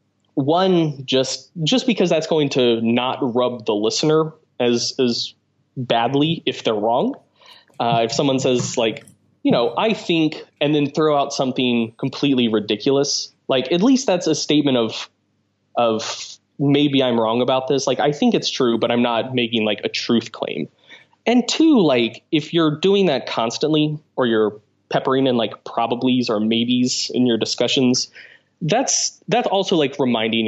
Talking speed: 165 wpm